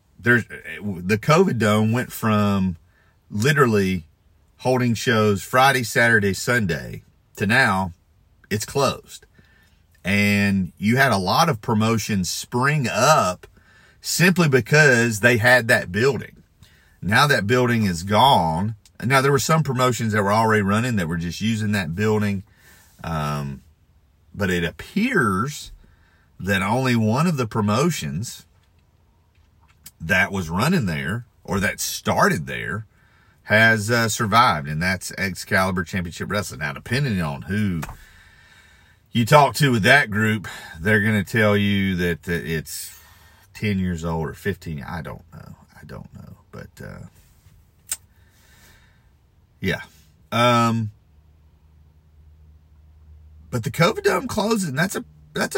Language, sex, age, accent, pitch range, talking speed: English, male, 40-59, American, 85-120 Hz, 125 wpm